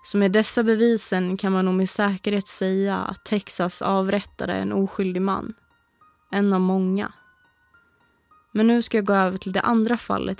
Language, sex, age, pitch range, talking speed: Swedish, female, 20-39, 195-220 Hz, 165 wpm